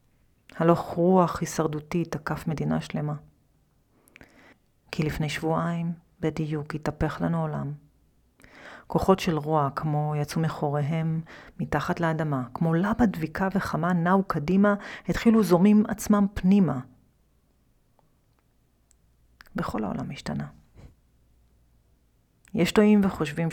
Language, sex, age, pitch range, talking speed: Hebrew, female, 30-49, 140-175 Hz, 95 wpm